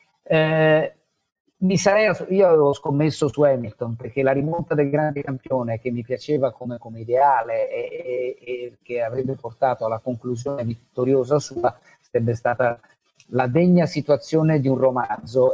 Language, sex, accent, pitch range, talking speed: Italian, male, native, 120-150 Hz, 145 wpm